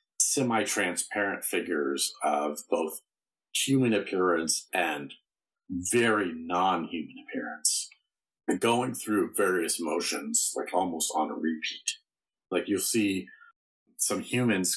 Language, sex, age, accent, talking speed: English, male, 40-59, American, 100 wpm